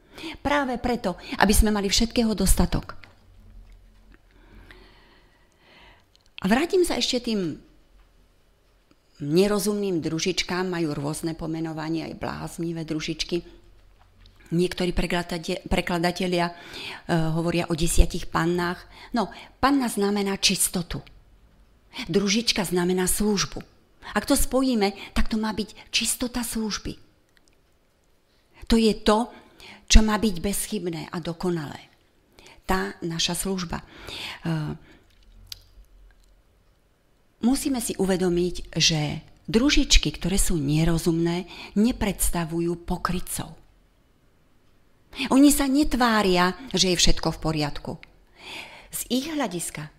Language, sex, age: Slovak, female, 40-59